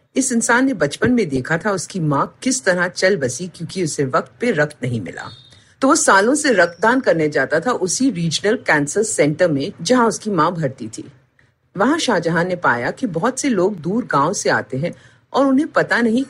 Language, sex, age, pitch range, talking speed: Hindi, female, 50-69, 140-235 Hz, 205 wpm